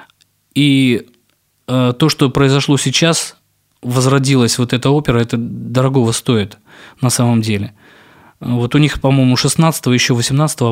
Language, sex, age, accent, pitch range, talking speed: Russian, male, 20-39, native, 120-145 Hz, 110 wpm